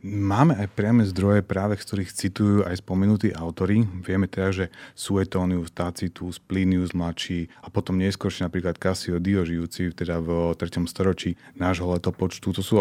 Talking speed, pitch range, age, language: 145 wpm, 90-100 Hz, 30-49, Slovak